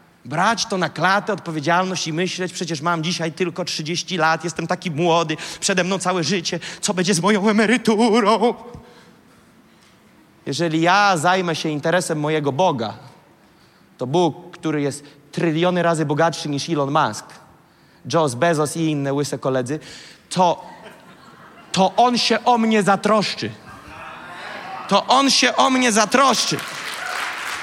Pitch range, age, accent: 170-245 Hz, 30-49, native